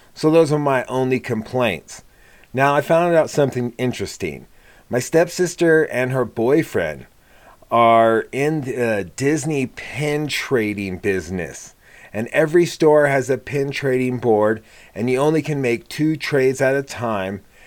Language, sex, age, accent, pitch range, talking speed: English, male, 30-49, American, 105-135 Hz, 145 wpm